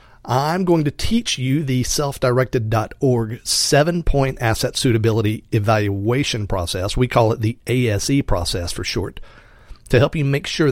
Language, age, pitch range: English, 40-59, 110-135 Hz